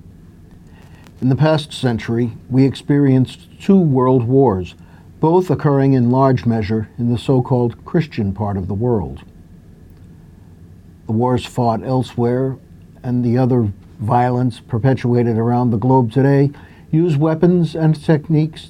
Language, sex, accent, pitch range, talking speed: English, male, American, 90-140 Hz, 125 wpm